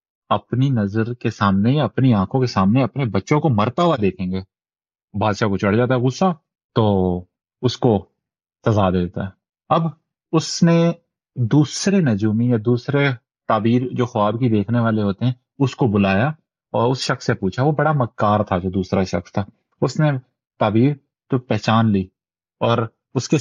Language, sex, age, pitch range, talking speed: Urdu, male, 30-49, 105-140 Hz, 170 wpm